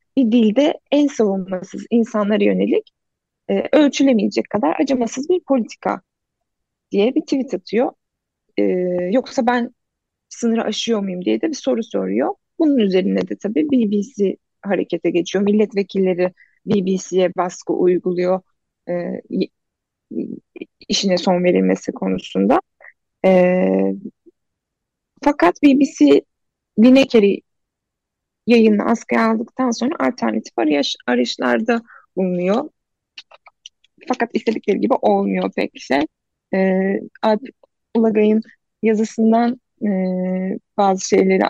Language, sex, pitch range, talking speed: Turkish, female, 185-255 Hz, 95 wpm